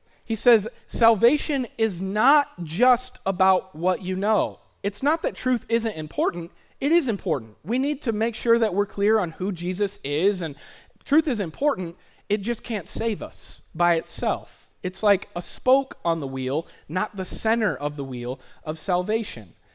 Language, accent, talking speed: English, American, 175 wpm